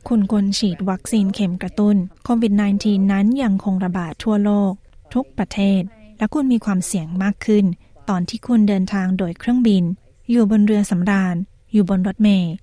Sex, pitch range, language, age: female, 185-215 Hz, Thai, 20-39